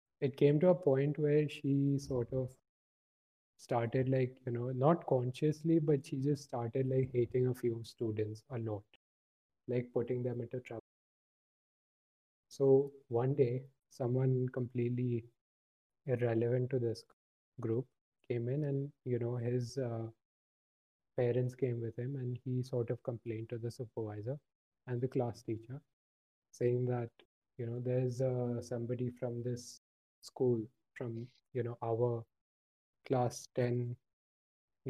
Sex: male